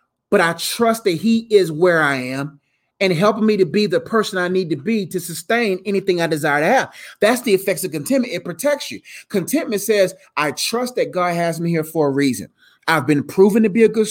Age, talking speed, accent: 30-49, 230 wpm, American